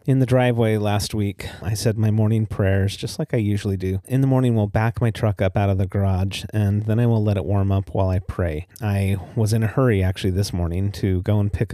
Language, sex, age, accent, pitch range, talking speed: English, male, 30-49, American, 95-110 Hz, 255 wpm